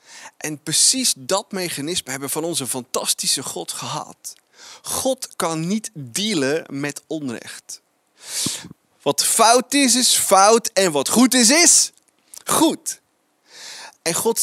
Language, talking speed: Dutch, 125 wpm